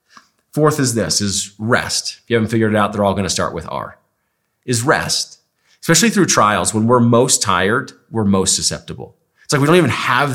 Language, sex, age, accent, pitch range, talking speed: English, male, 30-49, American, 105-130 Hz, 210 wpm